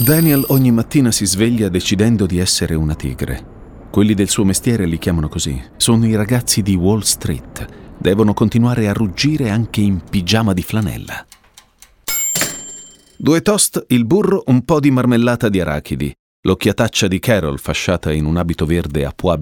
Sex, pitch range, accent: male, 80-120 Hz, native